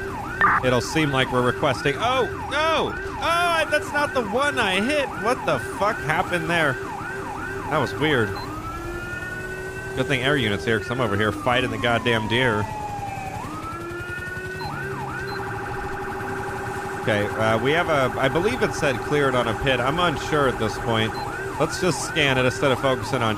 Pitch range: 110-130 Hz